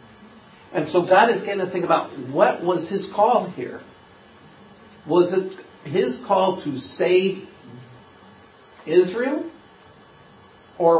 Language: English